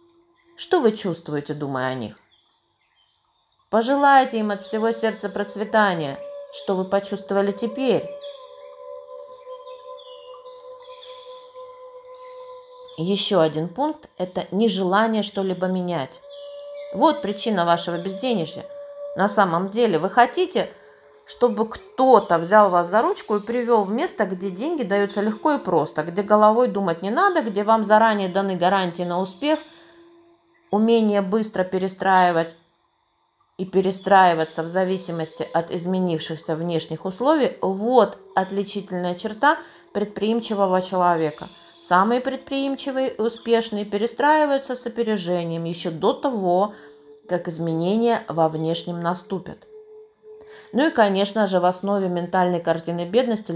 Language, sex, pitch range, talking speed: Russian, female, 180-285 Hz, 115 wpm